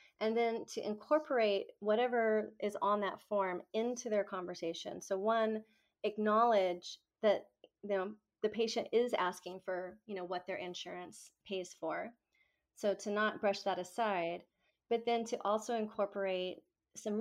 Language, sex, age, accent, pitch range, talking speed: English, female, 30-49, American, 185-220 Hz, 135 wpm